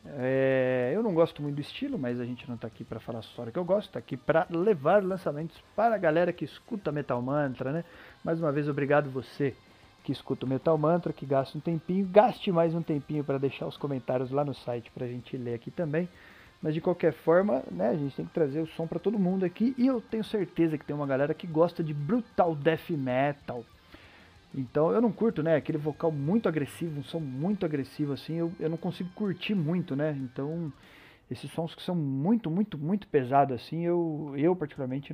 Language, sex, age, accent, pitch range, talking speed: Portuguese, male, 40-59, Brazilian, 135-180 Hz, 220 wpm